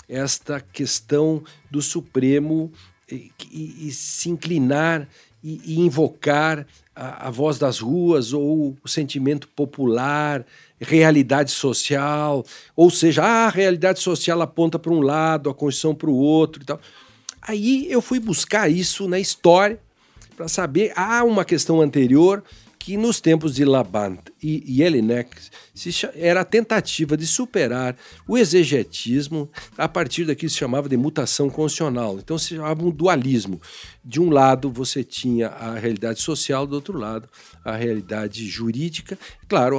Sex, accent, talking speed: male, Brazilian, 145 wpm